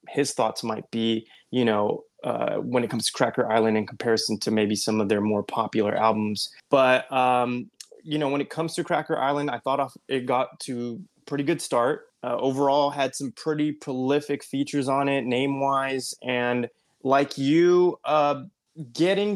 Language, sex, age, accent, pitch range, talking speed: English, male, 20-39, American, 115-140 Hz, 175 wpm